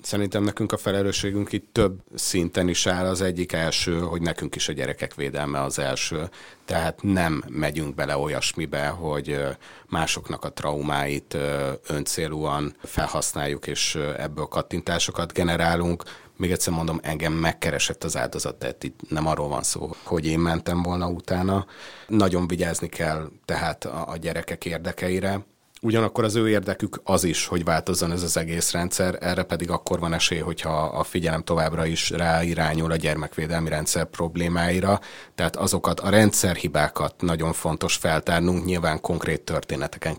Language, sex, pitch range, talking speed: Hungarian, male, 80-95 Hz, 145 wpm